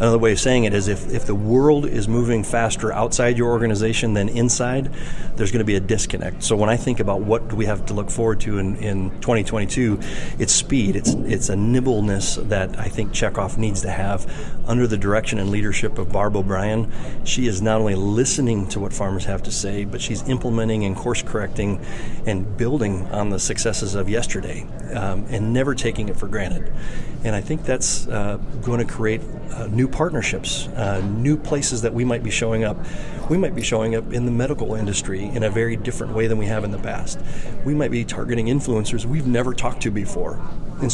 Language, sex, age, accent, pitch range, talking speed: English, male, 30-49, American, 100-120 Hz, 205 wpm